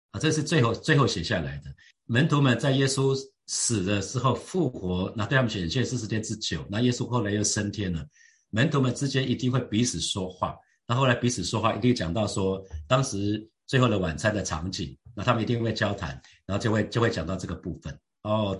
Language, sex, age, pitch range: Chinese, male, 50-69, 95-125 Hz